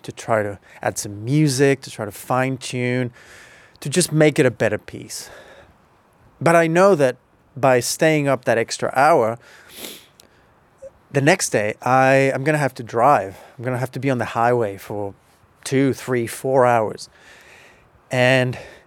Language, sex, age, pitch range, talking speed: English, male, 30-49, 110-140 Hz, 160 wpm